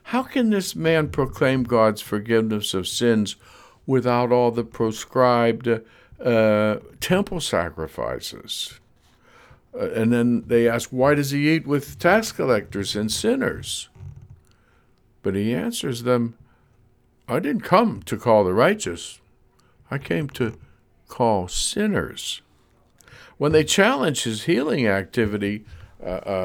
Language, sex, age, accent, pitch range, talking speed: English, male, 60-79, American, 105-145 Hz, 120 wpm